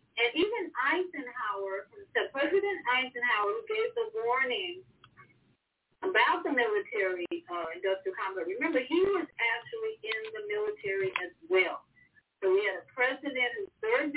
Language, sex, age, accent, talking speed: English, female, 40-59, American, 130 wpm